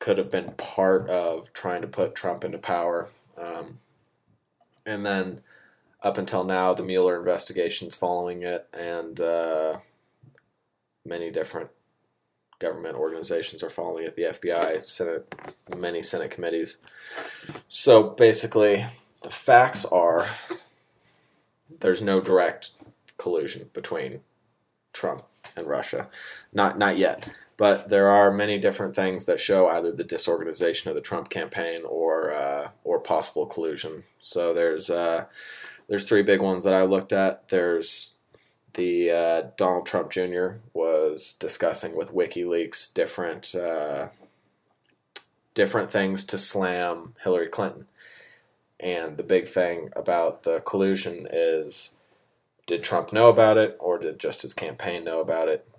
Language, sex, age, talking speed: English, male, 20-39, 135 wpm